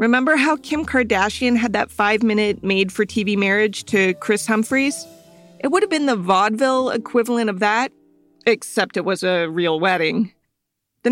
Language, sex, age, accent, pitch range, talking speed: English, female, 40-59, American, 185-235 Hz, 150 wpm